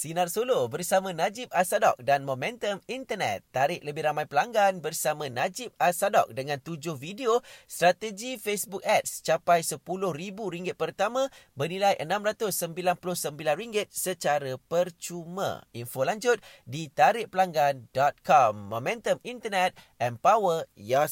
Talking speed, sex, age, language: 100 wpm, male, 30-49, Malay